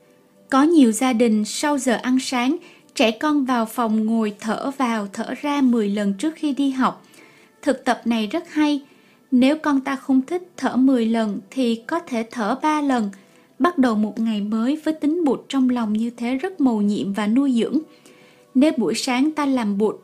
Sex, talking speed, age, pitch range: female, 200 wpm, 20-39, 225-285 Hz